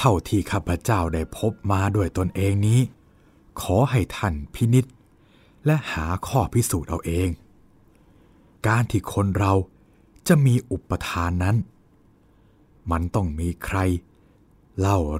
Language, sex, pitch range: Thai, male, 90-110 Hz